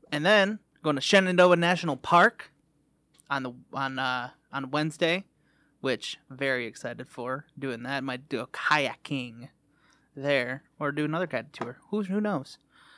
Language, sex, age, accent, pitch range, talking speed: English, male, 30-49, American, 140-175 Hz, 155 wpm